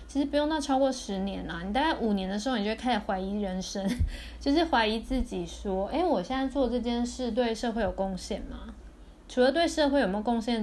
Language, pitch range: Chinese, 190-245 Hz